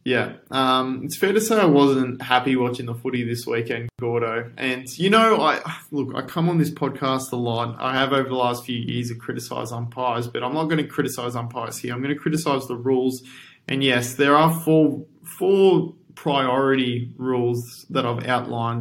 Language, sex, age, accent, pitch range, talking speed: English, male, 20-39, Australian, 120-145 Hz, 195 wpm